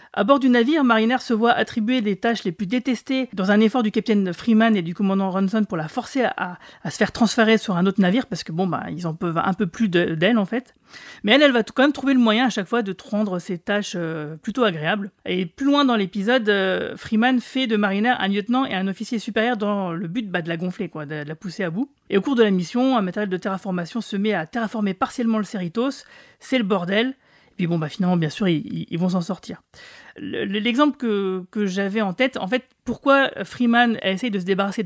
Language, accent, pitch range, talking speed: French, French, 190-240 Hz, 250 wpm